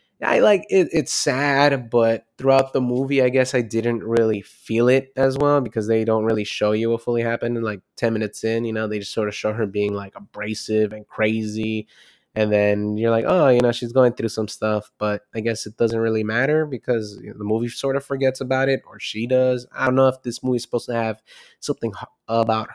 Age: 20-39